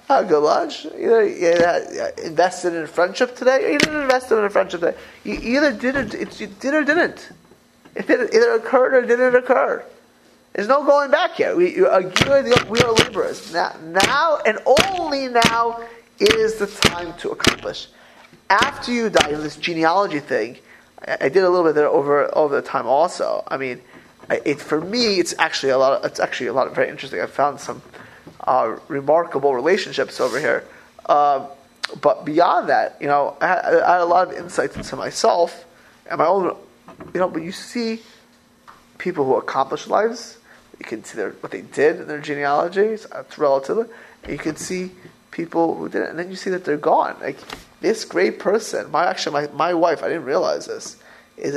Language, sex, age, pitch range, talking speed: English, male, 30-49, 165-280 Hz, 200 wpm